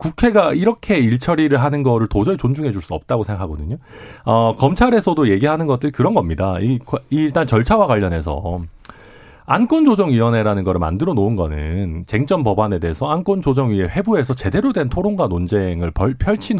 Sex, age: male, 40-59